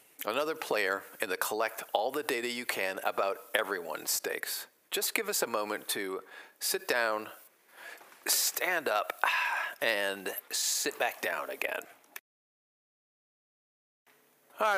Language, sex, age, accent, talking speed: English, male, 40-59, American, 120 wpm